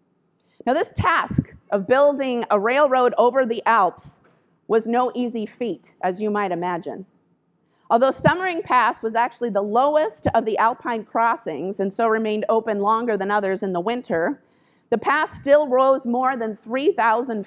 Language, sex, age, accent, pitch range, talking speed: English, female, 30-49, American, 220-265 Hz, 160 wpm